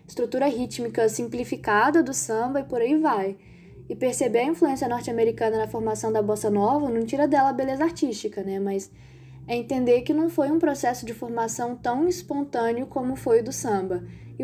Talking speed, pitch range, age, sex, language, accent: 185 wpm, 215-275 Hz, 10-29, female, Portuguese, Brazilian